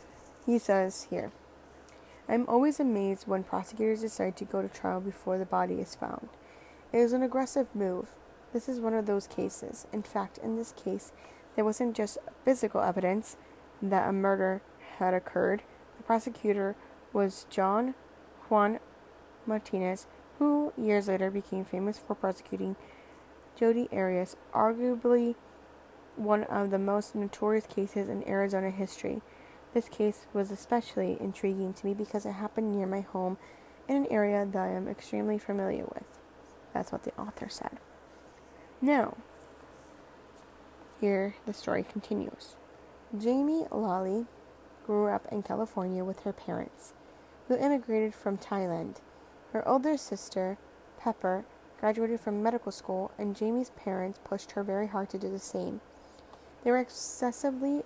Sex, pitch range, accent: female, 195-230 Hz, American